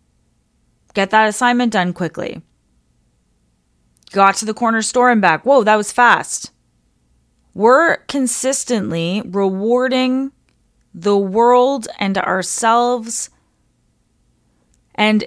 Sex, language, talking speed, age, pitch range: female, English, 95 wpm, 20-39, 145-215 Hz